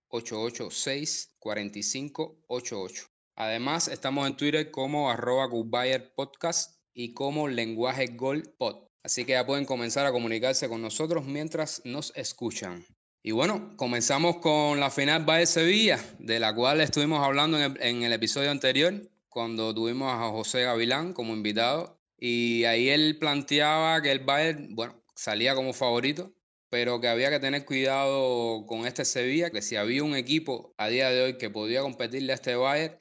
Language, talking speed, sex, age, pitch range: Spanish, 160 wpm, male, 20-39, 120-145 Hz